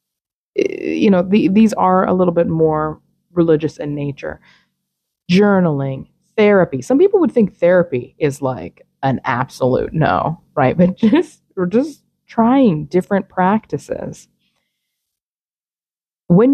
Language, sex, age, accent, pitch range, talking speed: English, female, 20-39, American, 155-215 Hz, 120 wpm